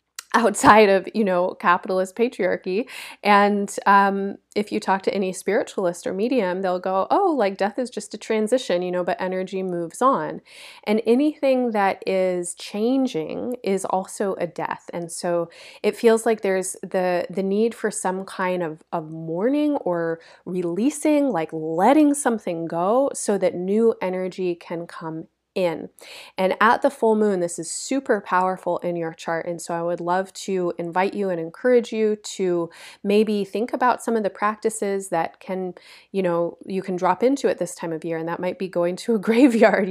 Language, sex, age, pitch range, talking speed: English, female, 20-39, 175-225 Hz, 180 wpm